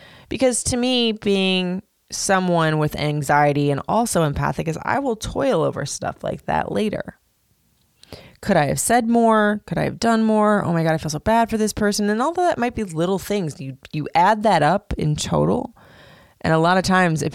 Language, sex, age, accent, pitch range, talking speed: English, female, 20-39, American, 150-215 Hz, 205 wpm